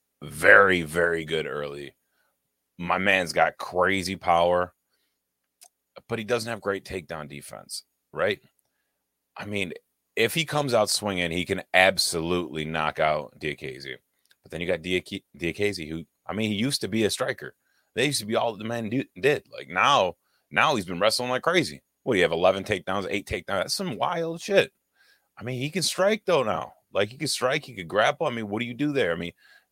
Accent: American